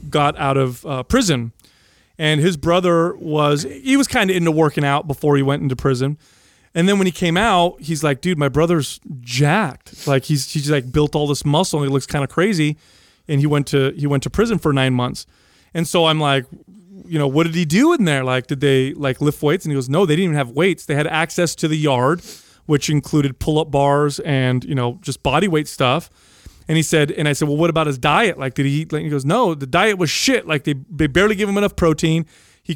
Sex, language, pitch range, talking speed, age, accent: male, English, 140-175 Hz, 245 wpm, 30-49, American